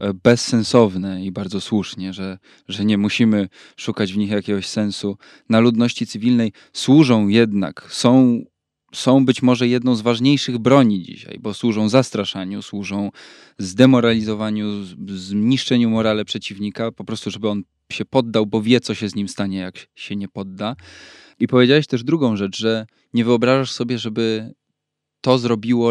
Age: 20-39